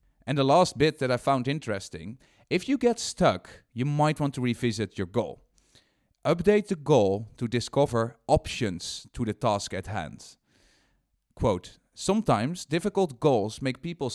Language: English